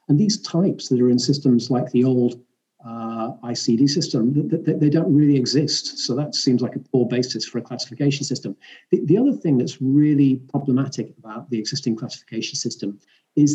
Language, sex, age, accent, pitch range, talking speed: English, male, 40-59, British, 125-155 Hz, 190 wpm